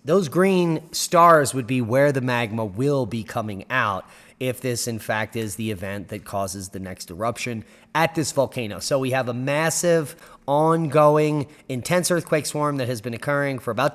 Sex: male